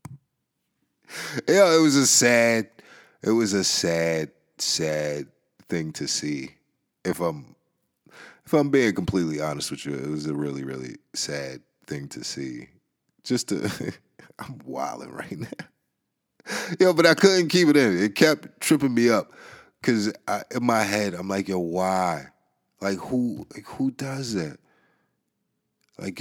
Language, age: English, 30-49